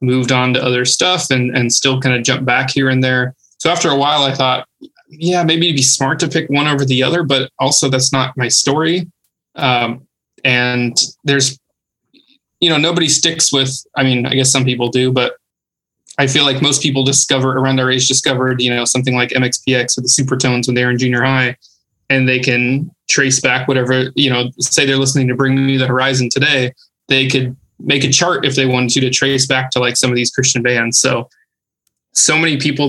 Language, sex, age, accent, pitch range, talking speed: English, male, 20-39, American, 125-140 Hz, 215 wpm